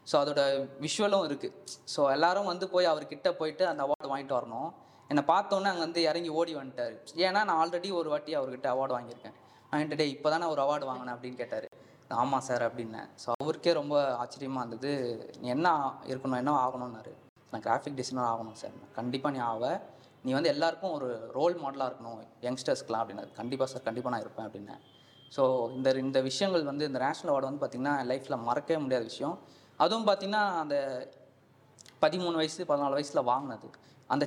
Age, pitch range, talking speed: 20-39, 130-165 Hz, 165 wpm